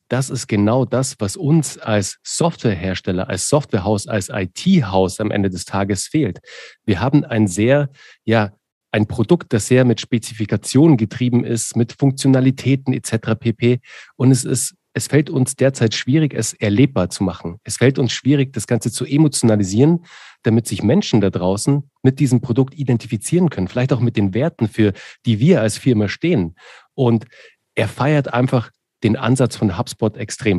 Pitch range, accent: 105-135 Hz, German